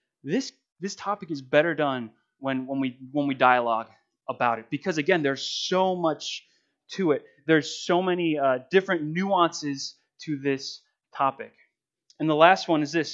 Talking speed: 165 wpm